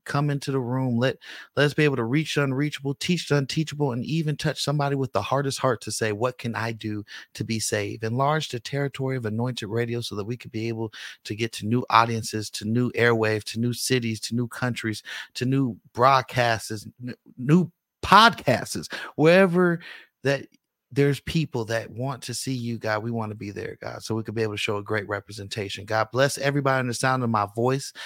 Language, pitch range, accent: English, 110-135 Hz, American